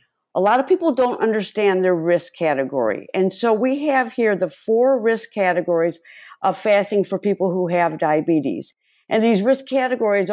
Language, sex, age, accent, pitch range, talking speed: English, female, 50-69, American, 185-235 Hz, 170 wpm